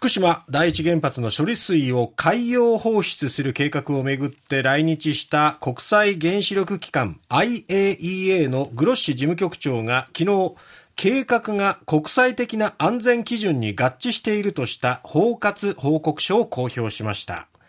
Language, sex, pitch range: Japanese, male, 140-200 Hz